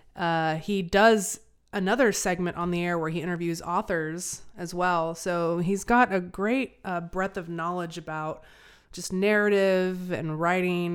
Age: 30-49